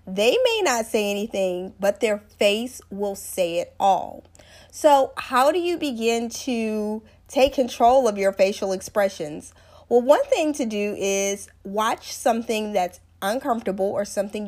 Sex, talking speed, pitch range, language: female, 150 wpm, 195-265 Hz, English